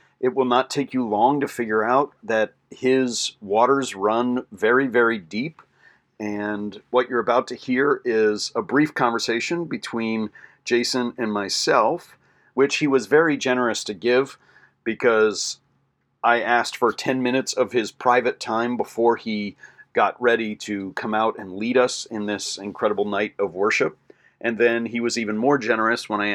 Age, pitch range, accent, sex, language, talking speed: 40-59, 110-130 Hz, American, male, English, 165 wpm